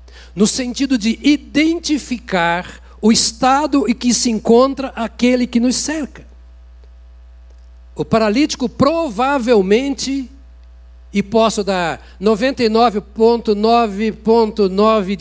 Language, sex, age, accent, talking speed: Portuguese, male, 60-79, Brazilian, 85 wpm